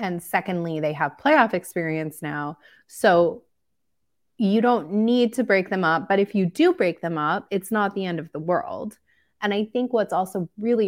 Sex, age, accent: female, 20-39, American